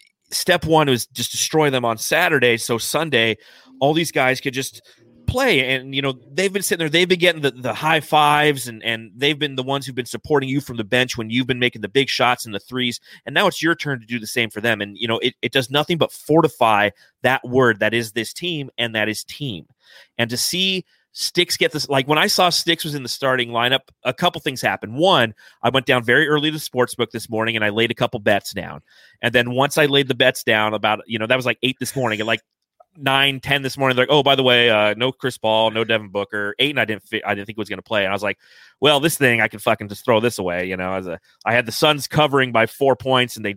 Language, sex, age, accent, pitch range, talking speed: English, male, 30-49, American, 115-155 Hz, 275 wpm